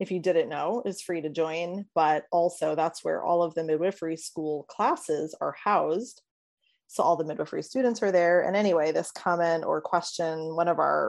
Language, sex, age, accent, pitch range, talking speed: English, female, 20-39, American, 165-205 Hz, 195 wpm